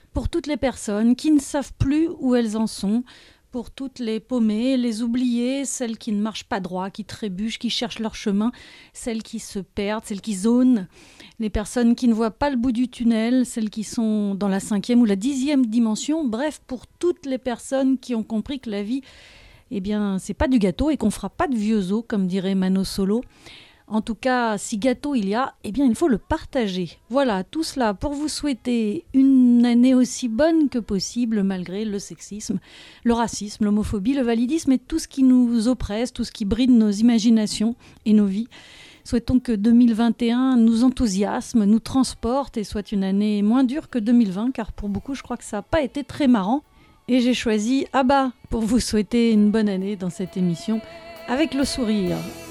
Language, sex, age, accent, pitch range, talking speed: French, female, 40-59, French, 215-255 Hz, 200 wpm